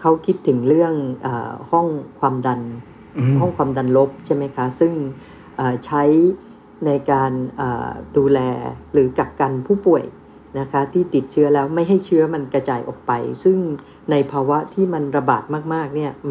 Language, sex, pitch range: Thai, female, 130-160 Hz